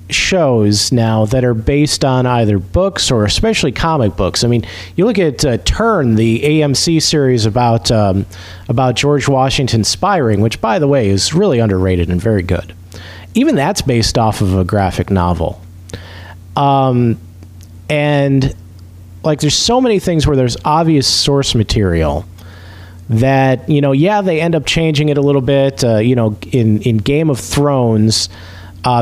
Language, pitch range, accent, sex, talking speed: English, 95-145 Hz, American, male, 165 wpm